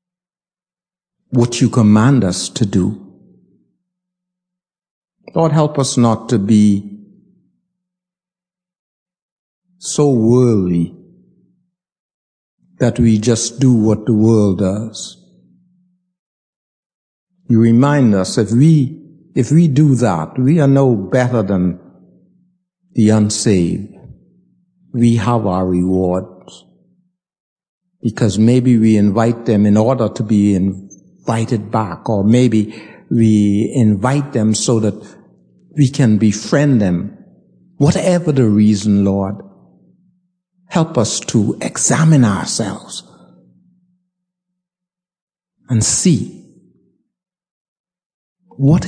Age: 60-79